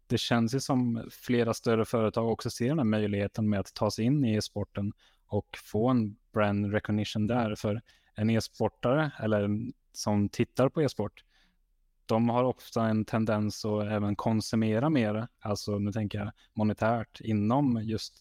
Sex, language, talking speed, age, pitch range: male, Swedish, 160 wpm, 20-39, 105-115 Hz